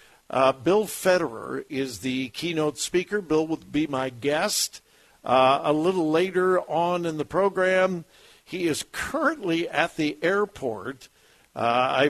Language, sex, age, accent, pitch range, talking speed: English, male, 60-79, American, 140-185 Hz, 140 wpm